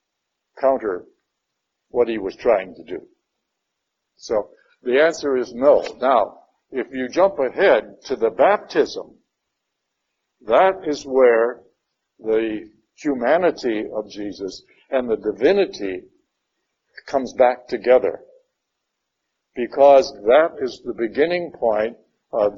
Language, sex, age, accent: English, male, 60-79, American